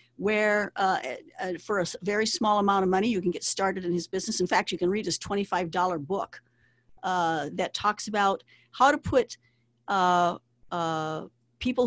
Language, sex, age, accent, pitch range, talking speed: English, female, 50-69, American, 175-215 Hz, 170 wpm